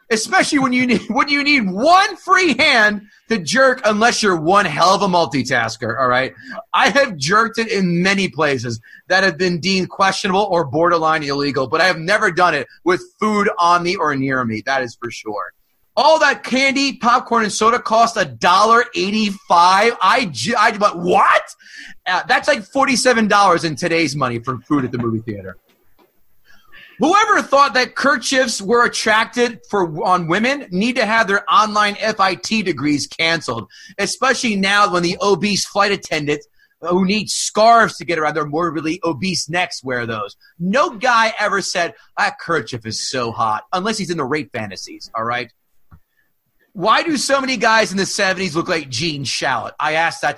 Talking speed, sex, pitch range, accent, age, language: 175 wpm, male, 160-230 Hz, American, 30-49, English